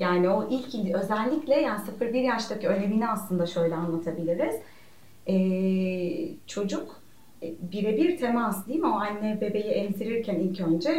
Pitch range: 180-245 Hz